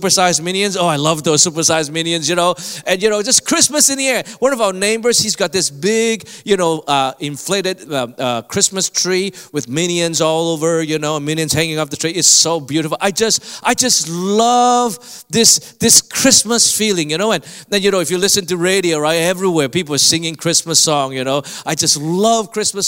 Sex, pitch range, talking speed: male, 165-225 Hz, 220 wpm